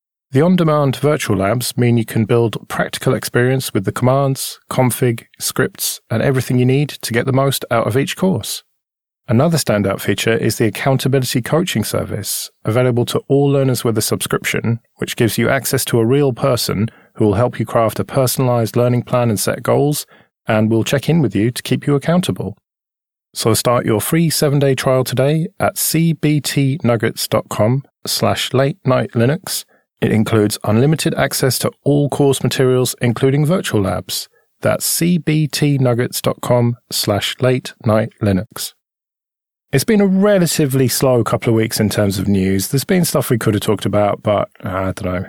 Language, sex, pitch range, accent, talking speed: English, male, 110-140 Hz, British, 165 wpm